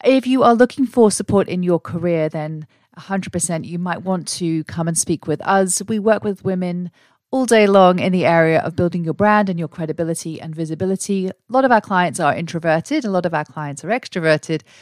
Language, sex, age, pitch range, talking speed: English, female, 40-59, 155-190 Hz, 215 wpm